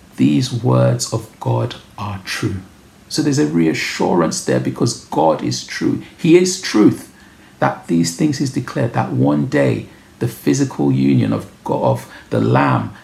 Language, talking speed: English, 155 wpm